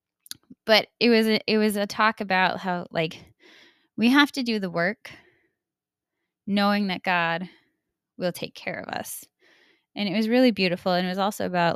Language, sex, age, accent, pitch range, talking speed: English, female, 10-29, American, 190-250 Hz, 180 wpm